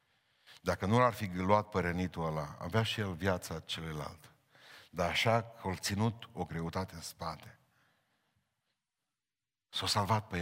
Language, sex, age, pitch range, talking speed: Romanian, male, 60-79, 95-120 Hz, 145 wpm